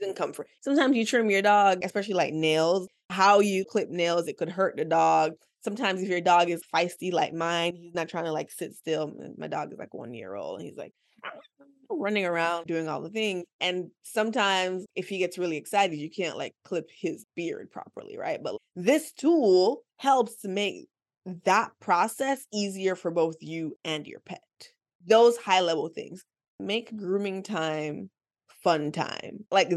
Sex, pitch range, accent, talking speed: female, 175-245 Hz, American, 180 wpm